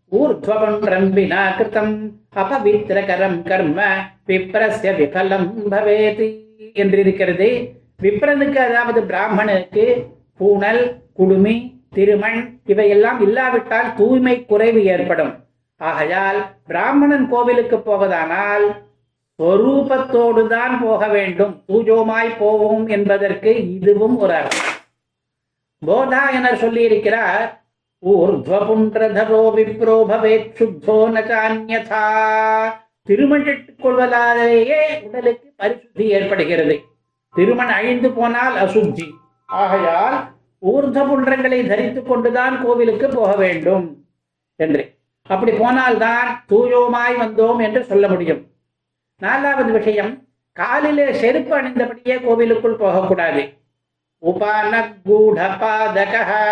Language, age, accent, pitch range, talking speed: Tamil, 60-79, native, 195-240 Hz, 50 wpm